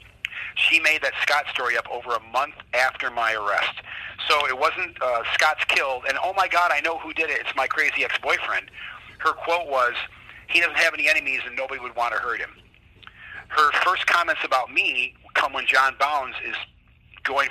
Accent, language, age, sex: American, English, 40-59, male